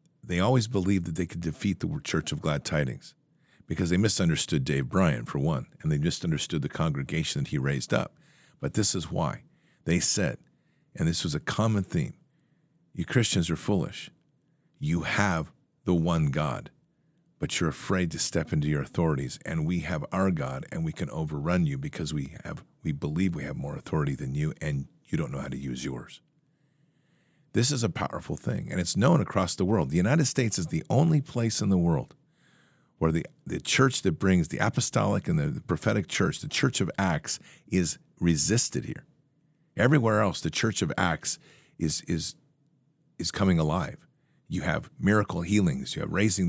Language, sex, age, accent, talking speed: English, male, 50-69, American, 185 wpm